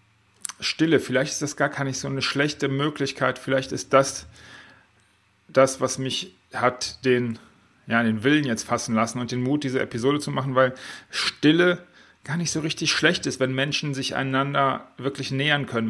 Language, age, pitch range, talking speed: German, 40-59, 115-145 Hz, 175 wpm